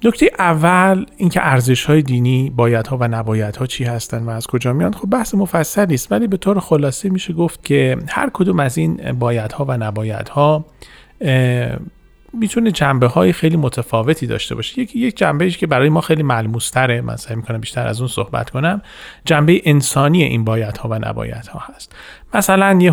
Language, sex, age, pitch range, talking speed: Persian, male, 40-59, 120-160 Hz, 180 wpm